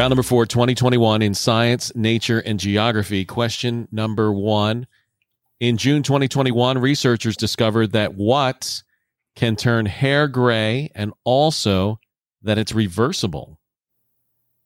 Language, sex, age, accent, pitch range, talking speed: English, male, 40-59, American, 110-125 Hz, 115 wpm